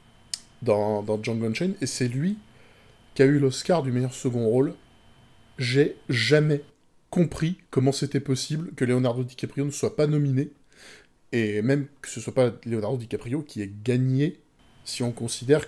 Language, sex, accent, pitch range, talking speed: French, male, French, 115-145 Hz, 160 wpm